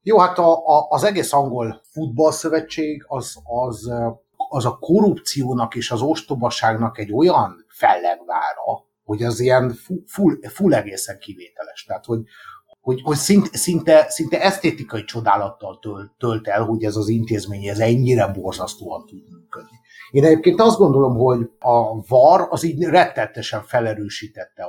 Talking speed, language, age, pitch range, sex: 140 wpm, English, 60-79, 110-160 Hz, male